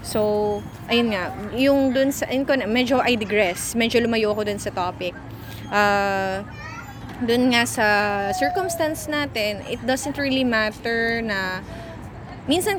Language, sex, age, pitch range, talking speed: English, female, 20-39, 200-260 Hz, 130 wpm